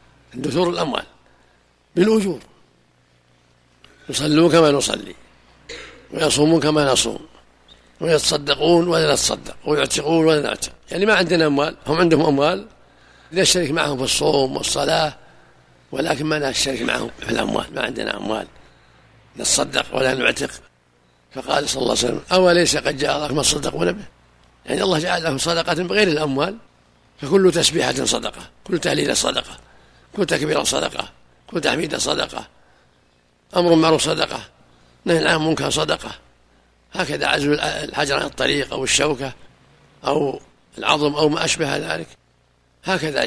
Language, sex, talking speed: Arabic, male, 125 wpm